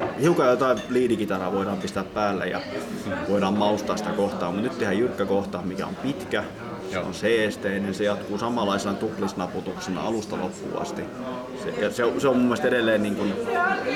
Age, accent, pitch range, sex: 20-39, native, 100-115 Hz, male